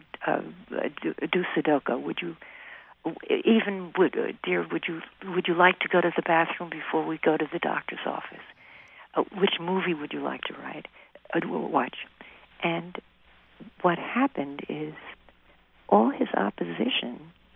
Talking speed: 150 wpm